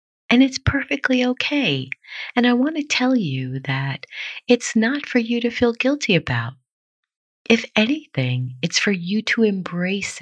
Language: English